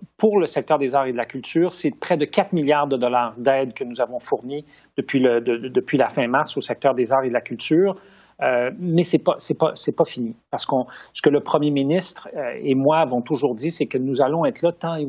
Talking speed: 260 wpm